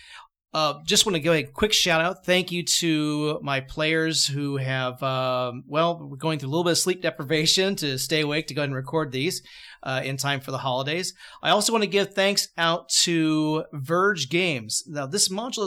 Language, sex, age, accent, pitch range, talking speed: English, male, 30-49, American, 135-170 Hz, 210 wpm